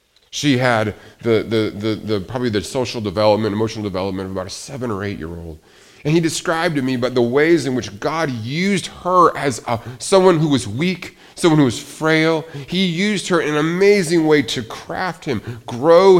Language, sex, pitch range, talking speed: English, male, 110-155 Hz, 195 wpm